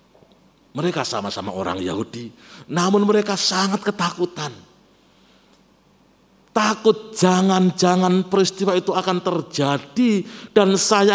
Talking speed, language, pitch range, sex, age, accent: 85 wpm, Indonesian, 120-200 Hz, male, 50-69, native